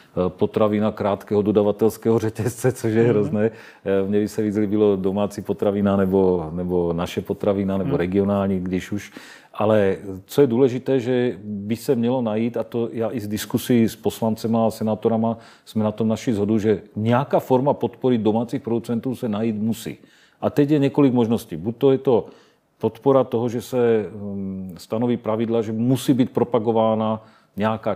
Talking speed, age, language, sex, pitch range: 160 wpm, 40-59, Czech, male, 100-115 Hz